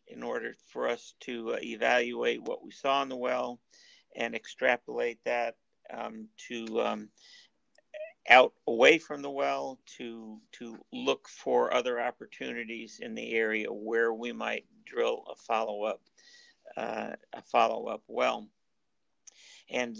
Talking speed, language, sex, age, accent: 135 wpm, English, male, 50-69, American